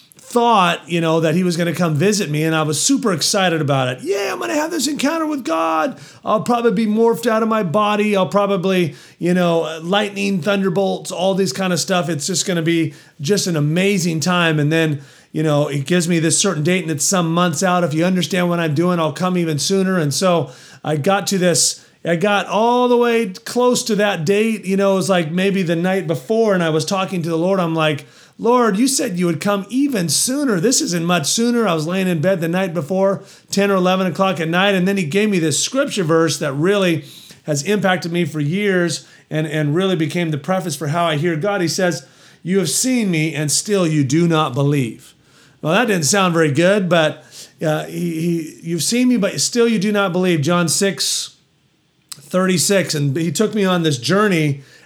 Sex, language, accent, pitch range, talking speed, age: male, English, American, 160-200 Hz, 225 wpm, 30-49